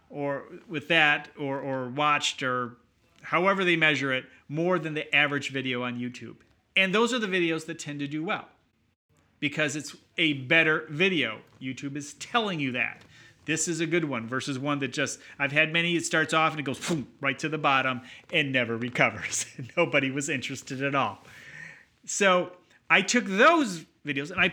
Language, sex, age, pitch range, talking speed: English, male, 30-49, 130-170 Hz, 185 wpm